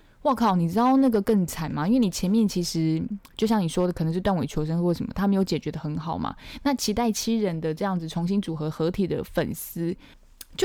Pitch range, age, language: 170-225 Hz, 10-29, Chinese